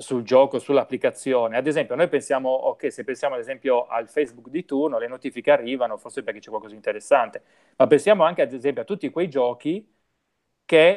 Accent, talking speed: native, 190 wpm